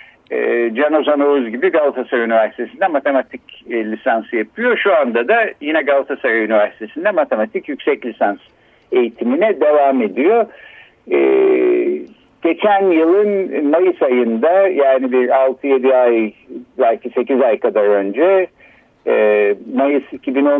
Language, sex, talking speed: Turkish, male, 100 wpm